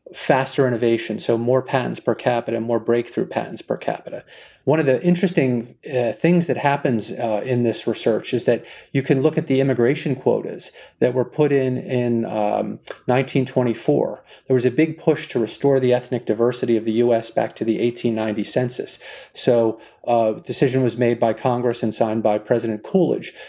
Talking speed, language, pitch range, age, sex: 185 wpm, English, 115-140 Hz, 30-49, male